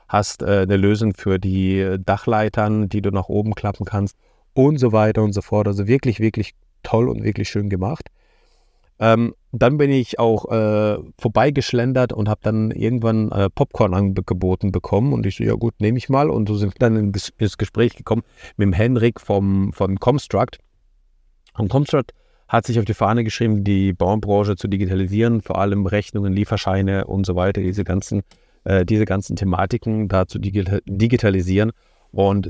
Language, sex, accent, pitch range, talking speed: German, male, German, 95-110 Hz, 170 wpm